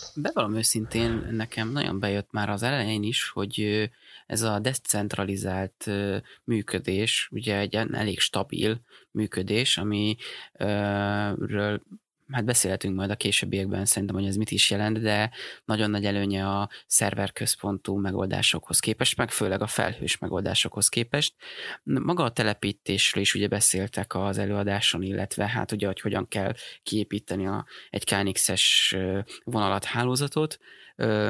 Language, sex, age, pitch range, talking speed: Hungarian, male, 20-39, 100-125 Hz, 125 wpm